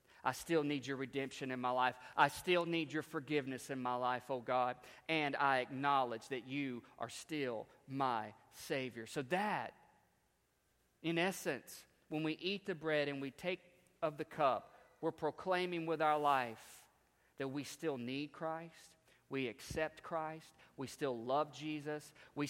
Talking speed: 160 wpm